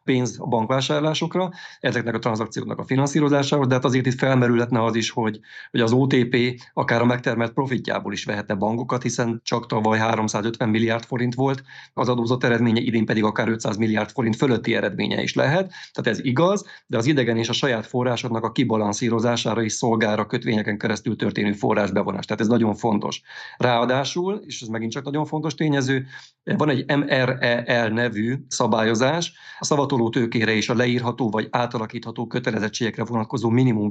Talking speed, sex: 160 wpm, male